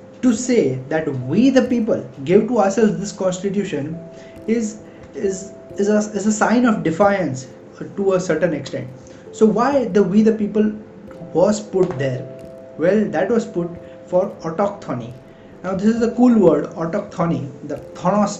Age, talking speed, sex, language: 20-39, 155 wpm, male, English